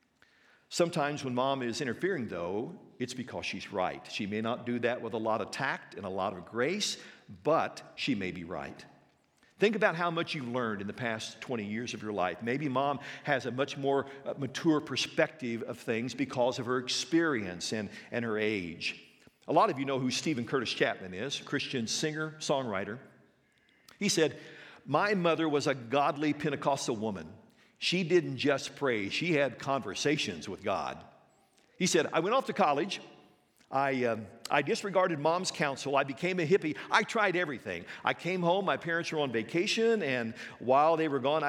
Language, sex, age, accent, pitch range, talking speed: English, male, 50-69, American, 120-170 Hz, 180 wpm